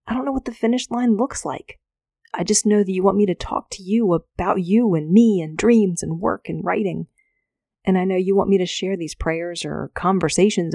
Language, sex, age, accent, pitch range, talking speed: English, female, 30-49, American, 160-200 Hz, 235 wpm